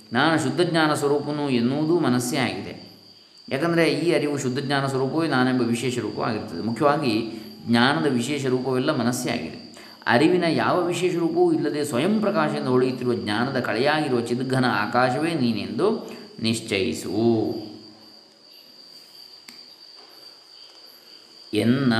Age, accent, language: 20-39, native, Kannada